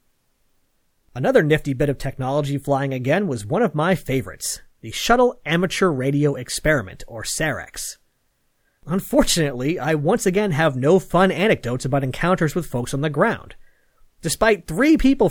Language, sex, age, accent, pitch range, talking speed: English, male, 30-49, American, 135-190 Hz, 145 wpm